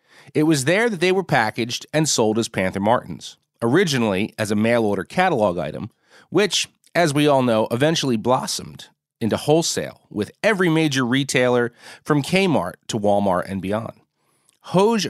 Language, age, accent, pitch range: English, 30-49, American, 110-165 Hz